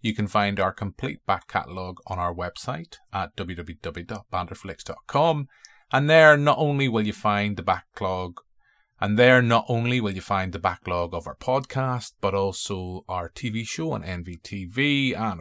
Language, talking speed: English, 160 wpm